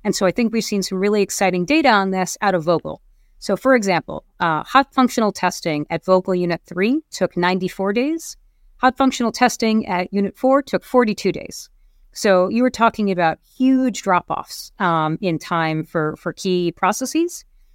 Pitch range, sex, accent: 185-230 Hz, female, American